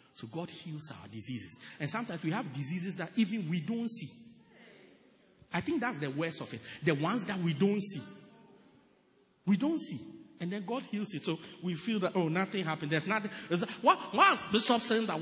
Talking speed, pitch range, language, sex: 195 wpm, 155-215 Hz, English, male